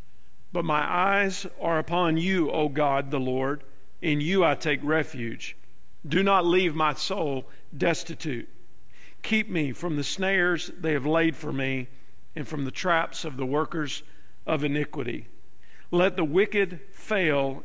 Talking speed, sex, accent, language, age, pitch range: 150 wpm, male, American, English, 50-69, 135-165 Hz